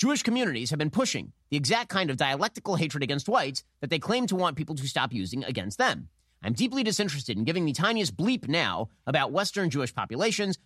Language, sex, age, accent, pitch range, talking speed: English, male, 30-49, American, 135-205 Hz, 210 wpm